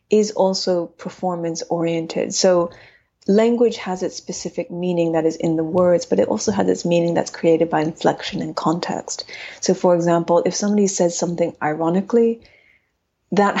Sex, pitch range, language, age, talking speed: female, 165-190 Hz, English, 30-49, 155 wpm